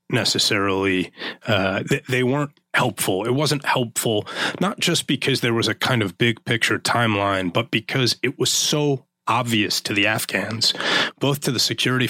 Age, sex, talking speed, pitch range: 30-49, male, 165 wpm, 105-130 Hz